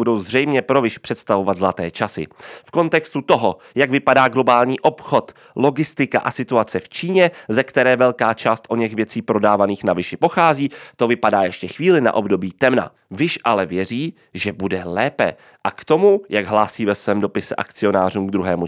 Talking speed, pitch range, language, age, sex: 175 wpm, 105-155 Hz, Czech, 30-49, male